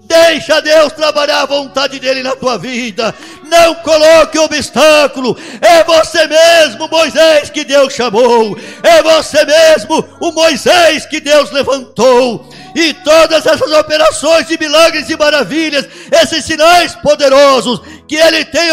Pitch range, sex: 280-320 Hz, male